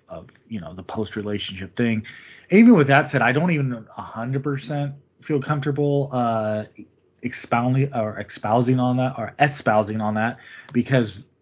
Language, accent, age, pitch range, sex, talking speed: English, American, 20-39, 110-140 Hz, male, 145 wpm